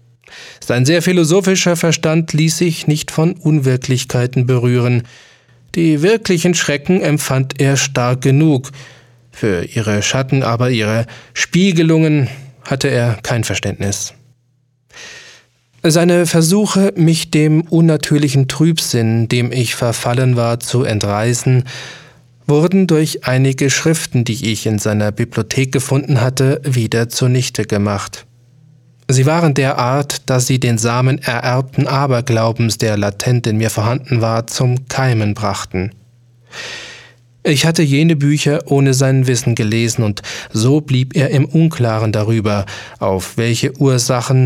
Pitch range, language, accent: 120-145 Hz, German, German